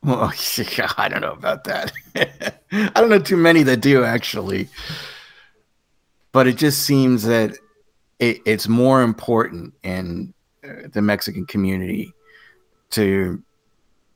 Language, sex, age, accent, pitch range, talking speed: English, male, 30-49, American, 100-125 Hz, 115 wpm